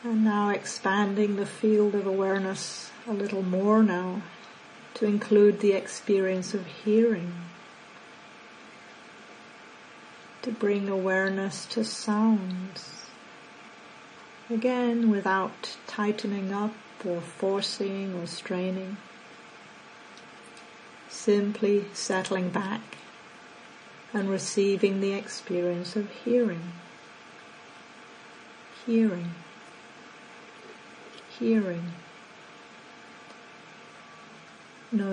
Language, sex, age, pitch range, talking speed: English, female, 40-59, 185-220 Hz, 70 wpm